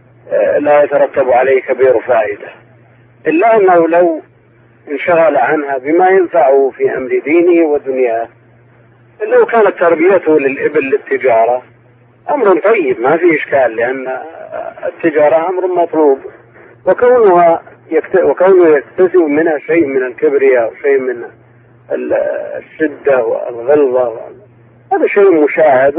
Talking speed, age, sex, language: 100 wpm, 40-59, male, Arabic